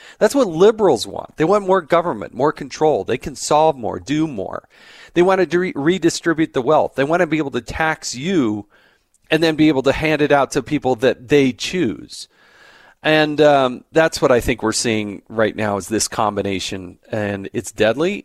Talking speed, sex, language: 195 wpm, male, English